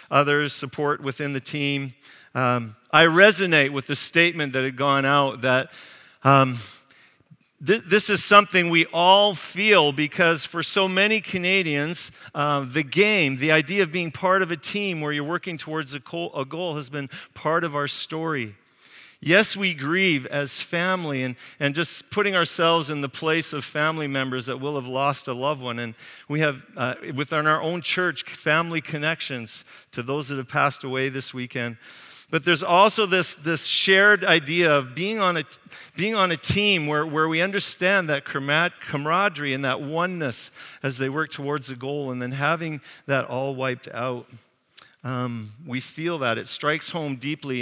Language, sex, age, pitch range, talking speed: English, male, 50-69, 130-170 Hz, 175 wpm